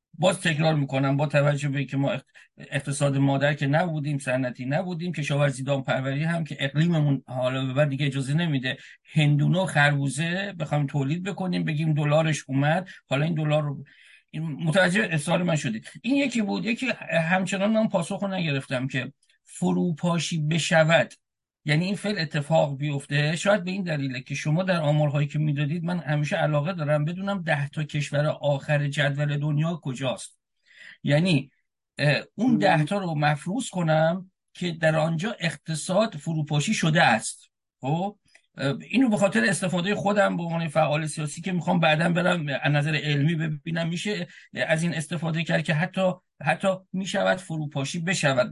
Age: 50-69